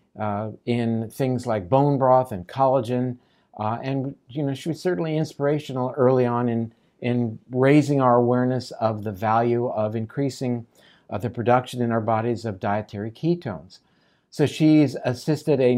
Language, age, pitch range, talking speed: English, 50-69, 115-140 Hz, 155 wpm